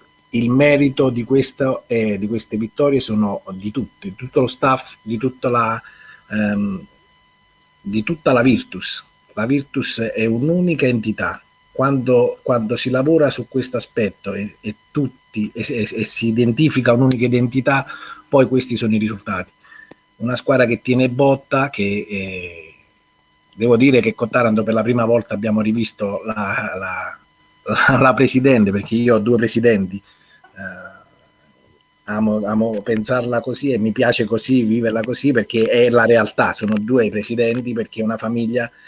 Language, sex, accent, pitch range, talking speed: Italian, male, native, 110-130 Hz, 155 wpm